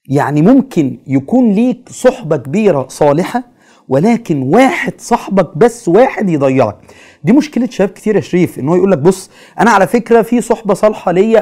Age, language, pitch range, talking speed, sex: 30-49, Arabic, 180-245 Hz, 160 wpm, male